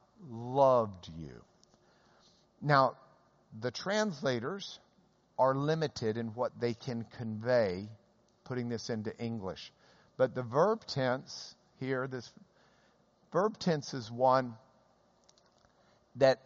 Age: 50-69